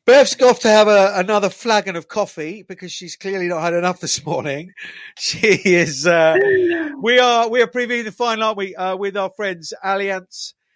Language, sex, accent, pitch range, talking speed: English, male, British, 150-190 Hz, 195 wpm